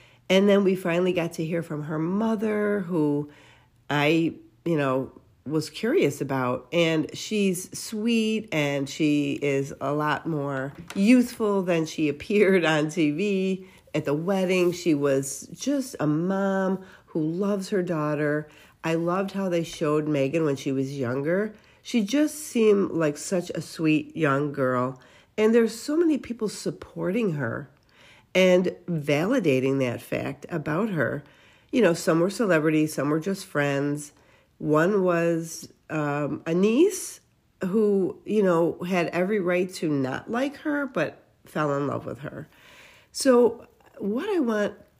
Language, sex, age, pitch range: English, female, 50-69, 145-200 Hz